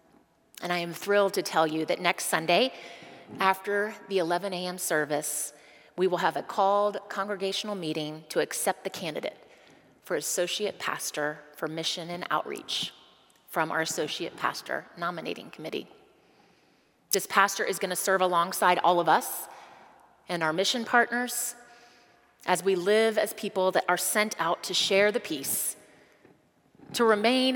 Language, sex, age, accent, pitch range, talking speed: English, female, 30-49, American, 170-205 Hz, 150 wpm